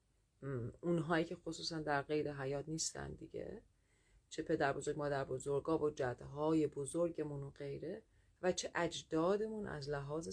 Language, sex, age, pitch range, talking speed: Persian, female, 30-49, 135-170 Hz, 130 wpm